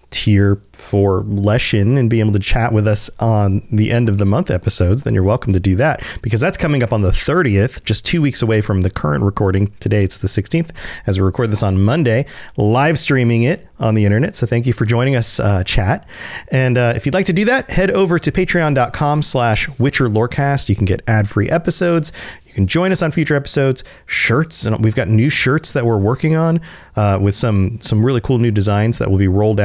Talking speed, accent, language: 225 wpm, American, English